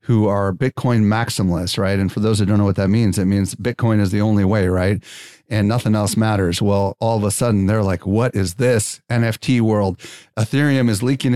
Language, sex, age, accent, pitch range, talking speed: English, male, 40-59, American, 100-120 Hz, 215 wpm